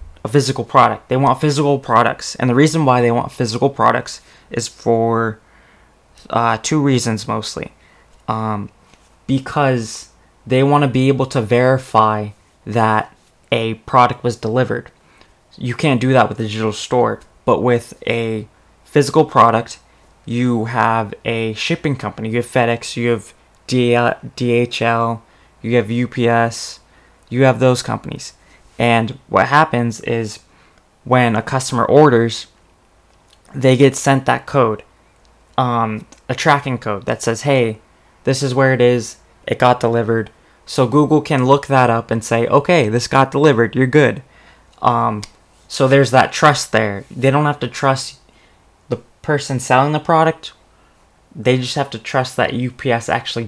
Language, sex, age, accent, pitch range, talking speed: English, male, 20-39, American, 110-130 Hz, 150 wpm